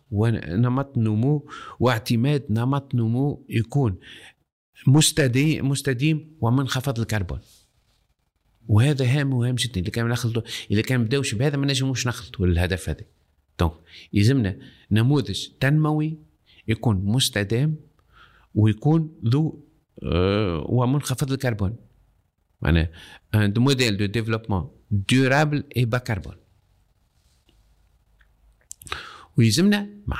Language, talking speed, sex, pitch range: Arabic, 90 wpm, male, 105-140 Hz